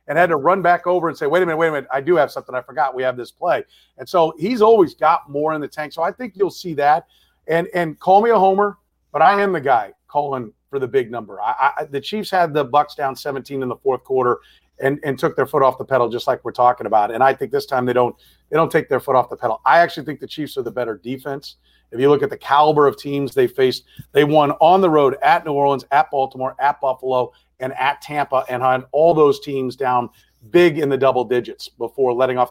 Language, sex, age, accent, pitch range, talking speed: English, male, 40-59, American, 130-165 Hz, 265 wpm